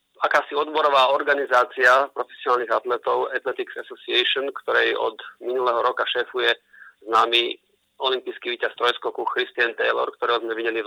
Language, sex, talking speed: Slovak, male, 120 wpm